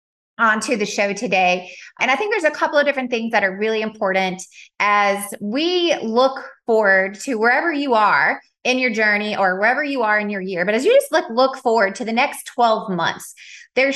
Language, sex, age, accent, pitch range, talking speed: English, female, 20-39, American, 205-265 Hz, 210 wpm